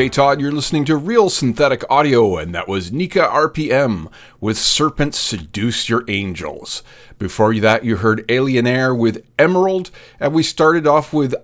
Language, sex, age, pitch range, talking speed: English, male, 30-49, 95-135 Hz, 155 wpm